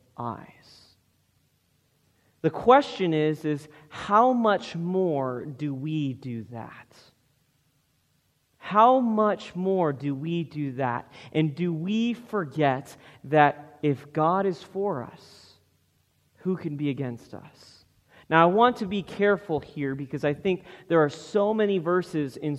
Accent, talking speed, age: American, 135 wpm, 30-49